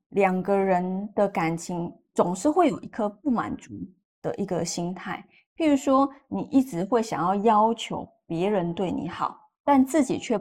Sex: female